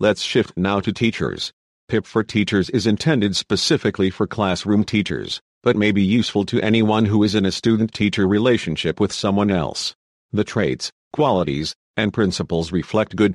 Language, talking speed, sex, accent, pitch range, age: English, 160 wpm, male, American, 95-115 Hz, 50-69